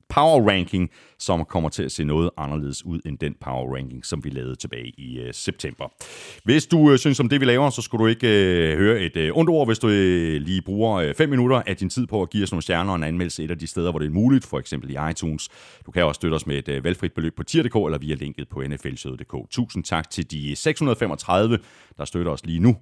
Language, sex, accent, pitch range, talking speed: Danish, male, native, 75-120 Hz, 255 wpm